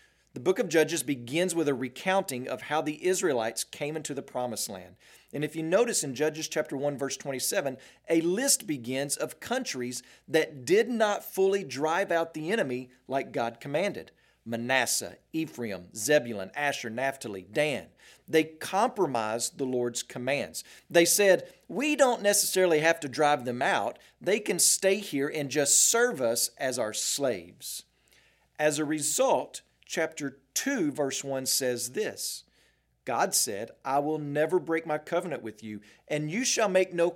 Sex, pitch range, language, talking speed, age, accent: male, 125-165 Hz, English, 160 wpm, 40-59, American